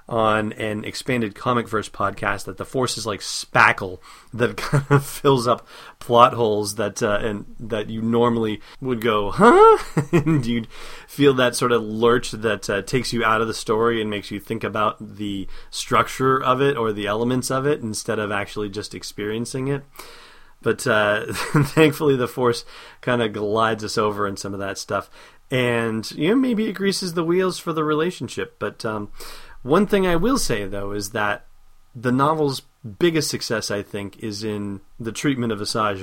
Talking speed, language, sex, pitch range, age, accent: 185 wpm, English, male, 105-125 Hz, 30-49, American